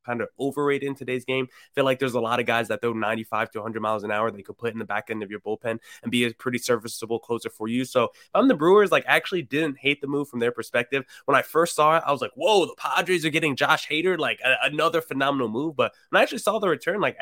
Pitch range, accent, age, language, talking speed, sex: 115-145 Hz, American, 20-39, English, 280 wpm, male